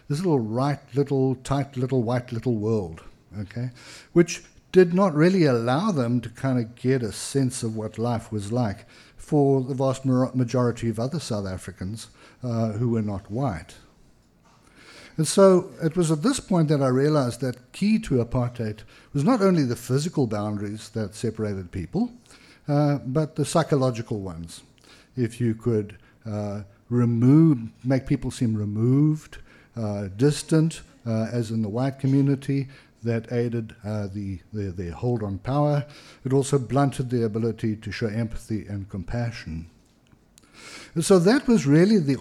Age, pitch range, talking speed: 60-79, 110-140 Hz, 155 wpm